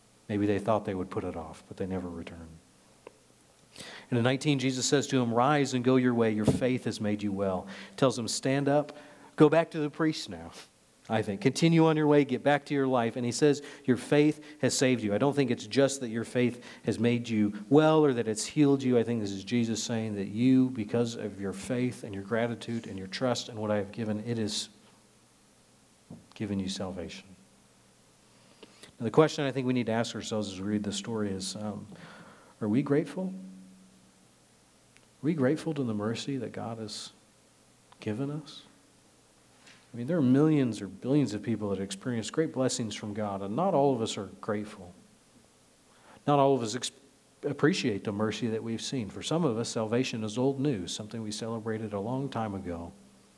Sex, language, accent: male, English, American